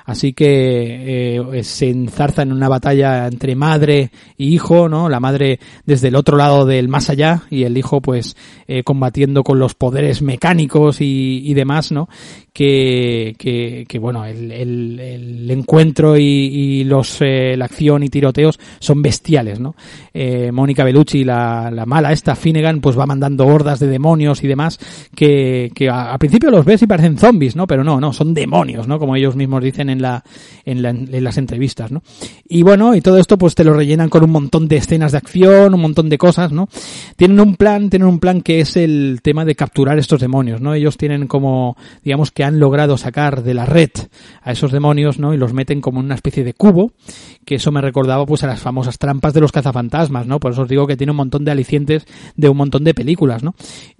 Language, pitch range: Spanish, 130-155 Hz